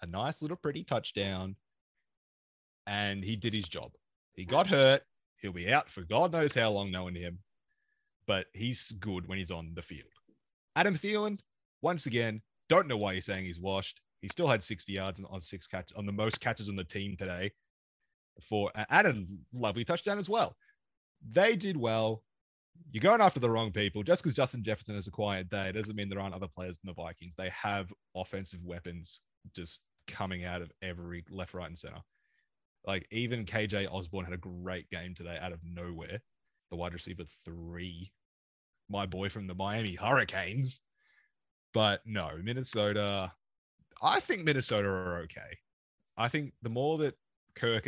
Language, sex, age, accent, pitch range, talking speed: English, male, 30-49, Australian, 90-110 Hz, 175 wpm